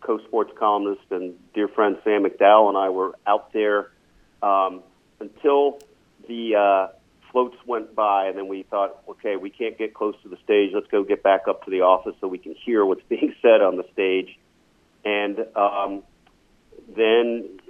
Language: English